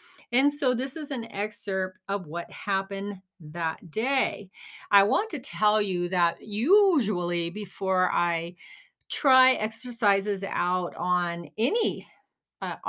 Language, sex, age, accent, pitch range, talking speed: English, female, 40-59, American, 185-245 Hz, 120 wpm